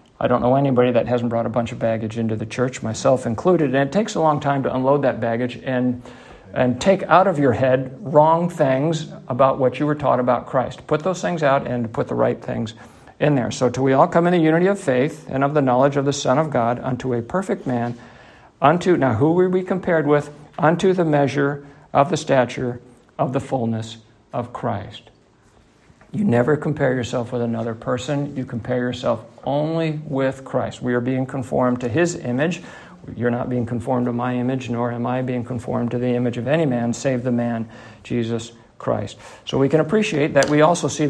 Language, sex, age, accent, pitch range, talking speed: English, male, 50-69, American, 120-150 Hz, 215 wpm